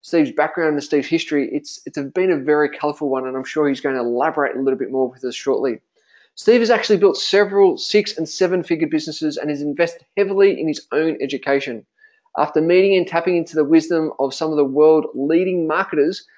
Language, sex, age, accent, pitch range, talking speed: English, male, 20-39, Australian, 145-180 Hz, 210 wpm